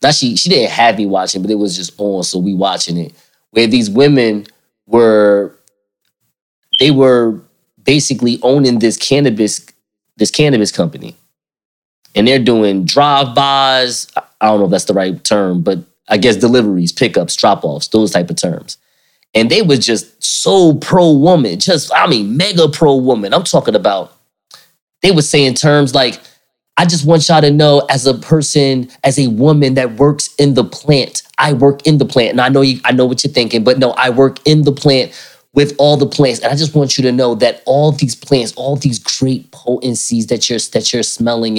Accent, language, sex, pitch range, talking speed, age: American, English, male, 115-145 Hz, 190 wpm, 20-39